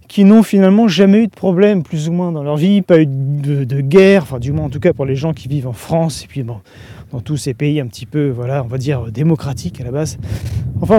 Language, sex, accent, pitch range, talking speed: French, male, French, 150-220 Hz, 280 wpm